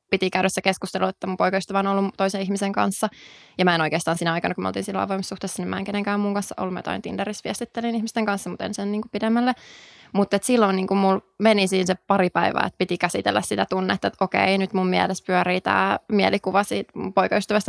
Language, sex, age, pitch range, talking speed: Finnish, female, 20-39, 180-205 Hz, 215 wpm